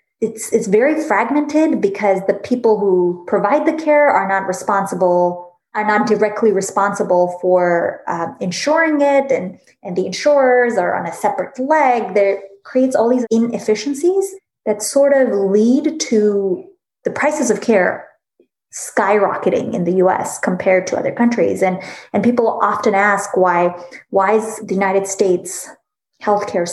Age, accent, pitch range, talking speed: 20-39, American, 190-255 Hz, 145 wpm